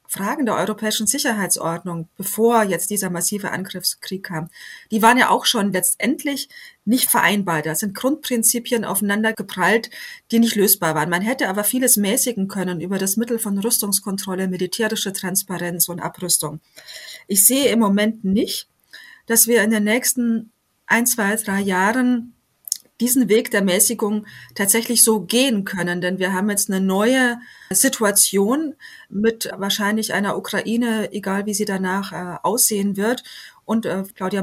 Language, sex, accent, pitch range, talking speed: German, female, German, 190-225 Hz, 150 wpm